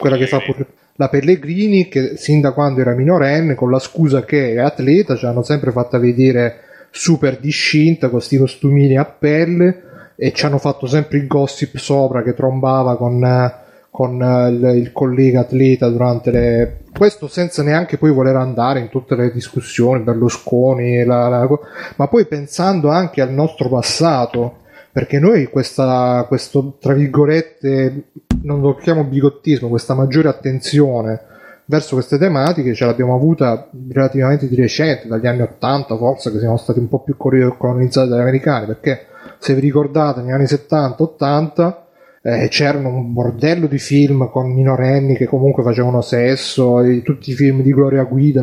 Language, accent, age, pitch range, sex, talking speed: Italian, native, 30-49, 125-145 Hz, male, 155 wpm